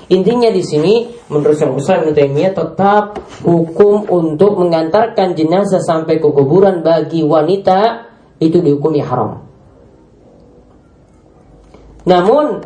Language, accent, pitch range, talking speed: Indonesian, native, 145-195 Hz, 95 wpm